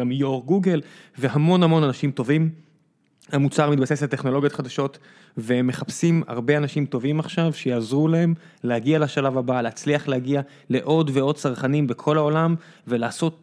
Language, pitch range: Hebrew, 130-160 Hz